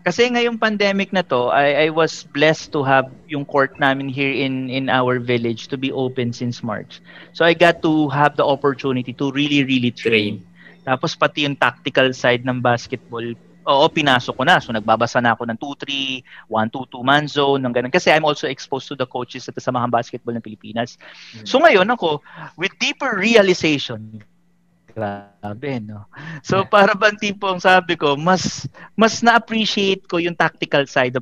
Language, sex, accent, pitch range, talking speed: English, male, Filipino, 130-180 Hz, 175 wpm